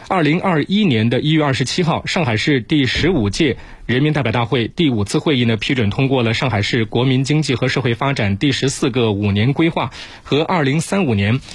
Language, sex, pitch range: Chinese, male, 115-155 Hz